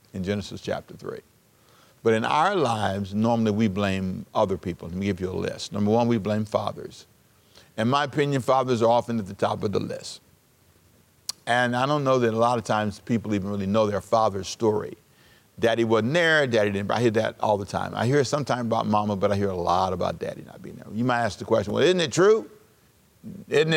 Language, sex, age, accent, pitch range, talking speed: English, male, 50-69, American, 105-125 Hz, 220 wpm